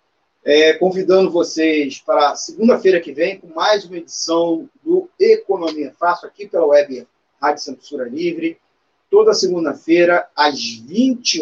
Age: 40-59